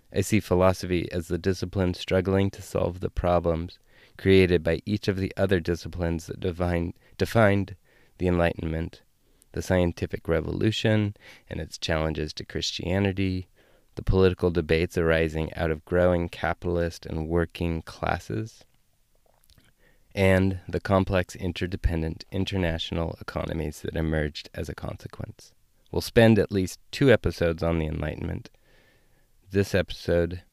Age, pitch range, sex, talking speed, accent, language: 20-39, 85-100 Hz, male, 125 wpm, American, English